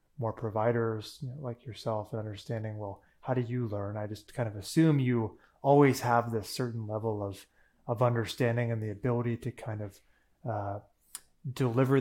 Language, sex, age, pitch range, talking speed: English, male, 30-49, 105-125 Hz, 175 wpm